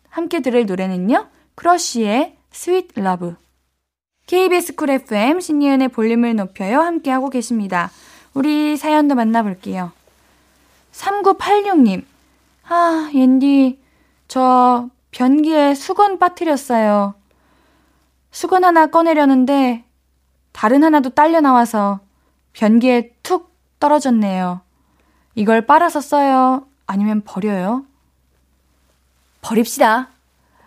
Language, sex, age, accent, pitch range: Korean, female, 10-29, native, 200-310 Hz